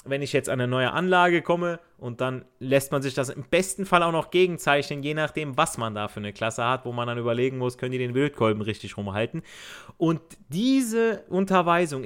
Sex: male